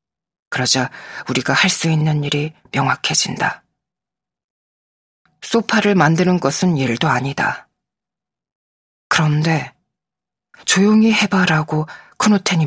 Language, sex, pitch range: Korean, female, 150-180 Hz